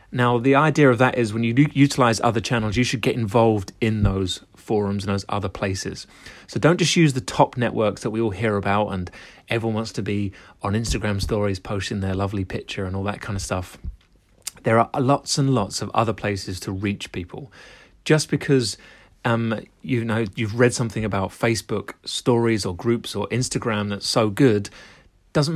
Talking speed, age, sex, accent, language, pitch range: 195 wpm, 30-49, male, British, English, 105-125 Hz